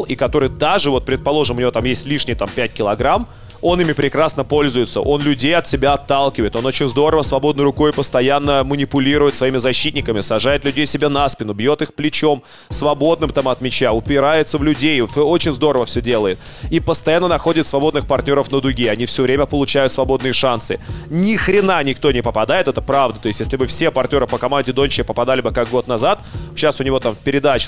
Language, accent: Russian, native